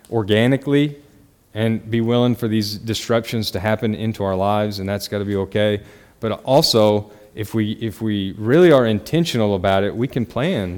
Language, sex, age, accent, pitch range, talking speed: English, male, 30-49, American, 105-130 Hz, 180 wpm